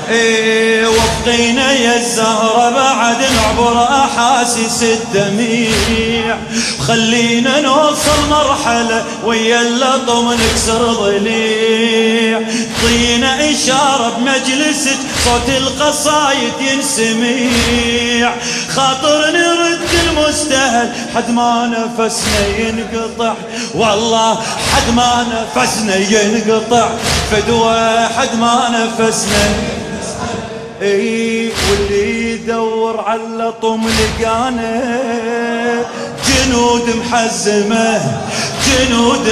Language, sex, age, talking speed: Arabic, male, 30-49, 70 wpm